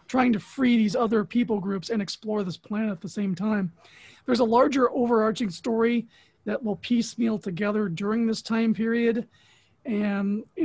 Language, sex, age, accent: English, male, 40-59, American